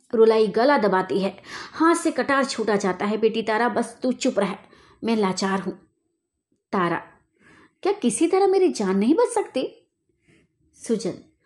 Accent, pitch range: native, 205-280 Hz